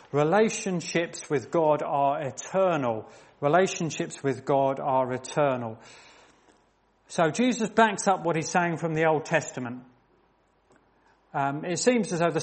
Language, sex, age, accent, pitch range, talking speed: English, male, 40-59, British, 140-170 Hz, 130 wpm